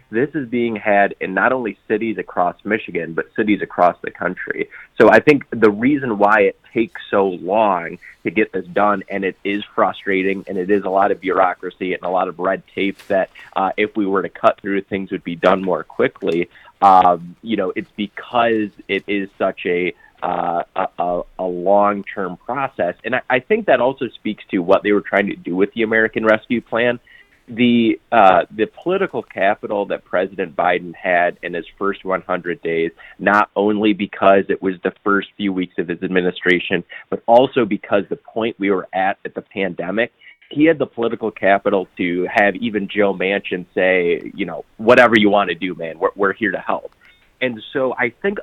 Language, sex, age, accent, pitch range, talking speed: English, male, 30-49, American, 95-110 Hz, 195 wpm